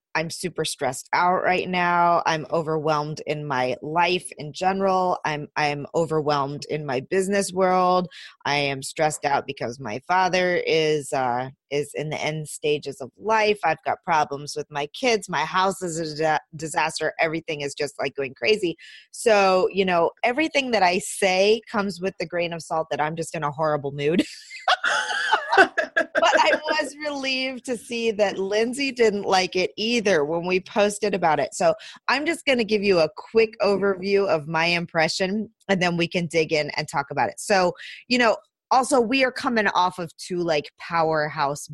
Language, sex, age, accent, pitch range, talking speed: English, female, 30-49, American, 155-200 Hz, 180 wpm